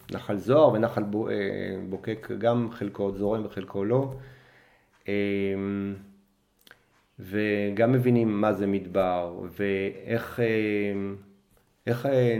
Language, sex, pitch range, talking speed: Hebrew, male, 100-120 Hz, 75 wpm